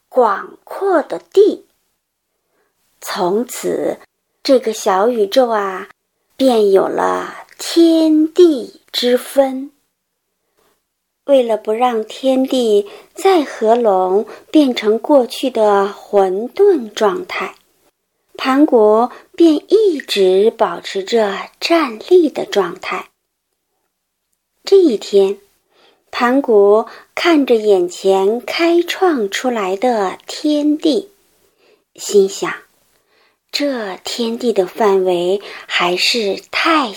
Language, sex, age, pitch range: Chinese, male, 50-69, 215-340 Hz